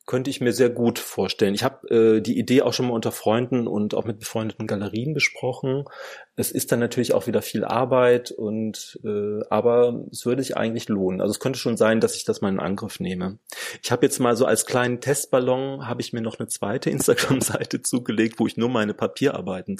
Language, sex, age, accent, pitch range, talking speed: German, male, 30-49, German, 105-125 Hz, 215 wpm